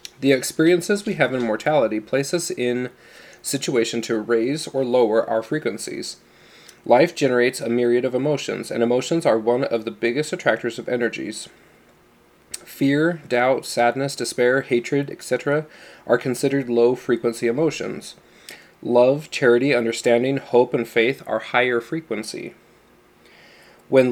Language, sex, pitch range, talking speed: English, male, 115-140 Hz, 130 wpm